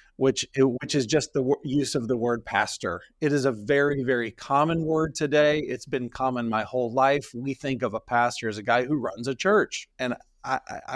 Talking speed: 210 wpm